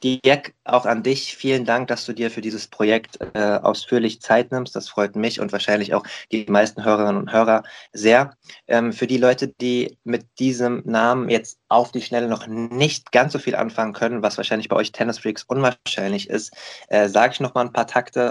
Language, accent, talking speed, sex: German, German, 205 wpm, male